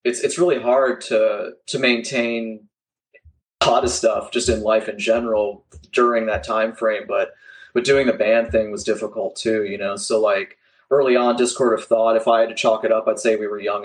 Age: 20-39